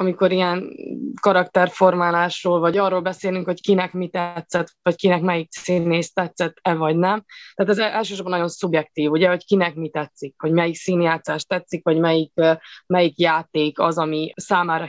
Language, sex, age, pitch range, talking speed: Hungarian, female, 20-39, 170-195 Hz, 155 wpm